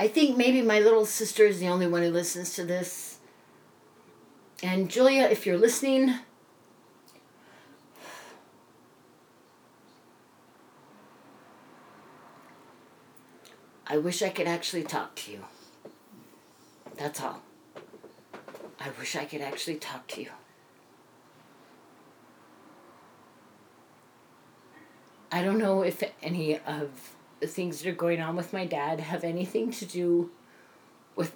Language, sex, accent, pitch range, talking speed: English, female, American, 165-205 Hz, 110 wpm